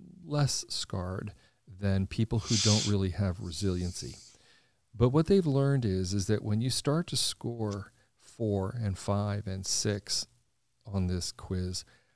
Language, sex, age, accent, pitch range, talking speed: English, male, 40-59, American, 95-120 Hz, 145 wpm